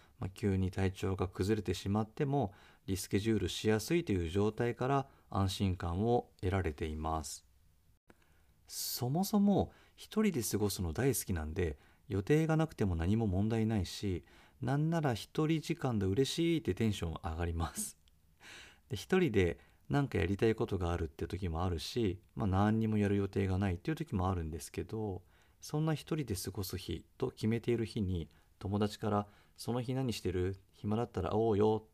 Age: 40-59